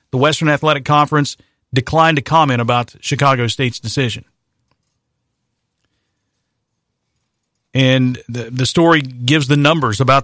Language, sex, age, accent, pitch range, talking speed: English, male, 50-69, American, 125-160 Hz, 110 wpm